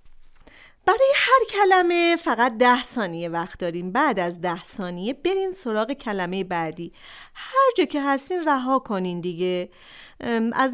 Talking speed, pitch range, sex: 135 wpm, 195-280 Hz, female